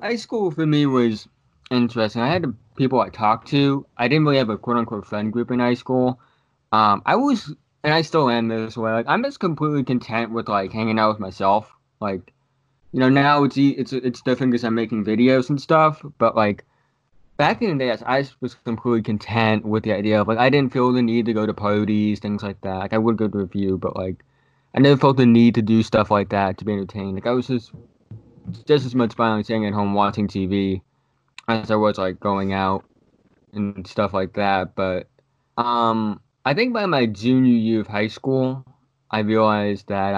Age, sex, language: 20-39, male, English